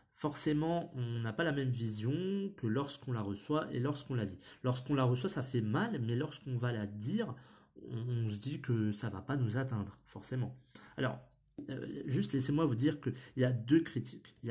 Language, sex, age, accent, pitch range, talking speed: French, male, 30-49, French, 115-155 Hz, 205 wpm